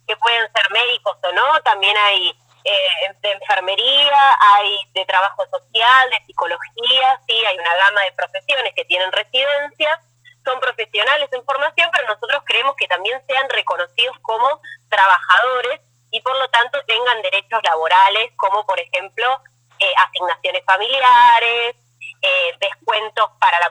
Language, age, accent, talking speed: Spanish, 20-39, Argentinian, 140 wpm